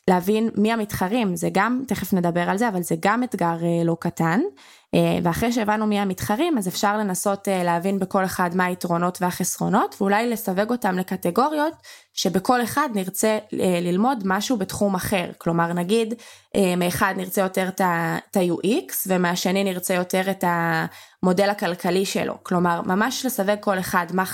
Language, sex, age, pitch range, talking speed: English, female, 20-39, 180-215 Hz, 145 wpm